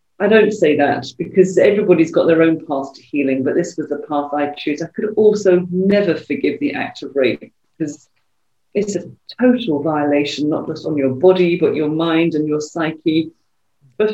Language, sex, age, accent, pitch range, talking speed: English, female, 40-59, British, 165-210 Hz, 190 wpm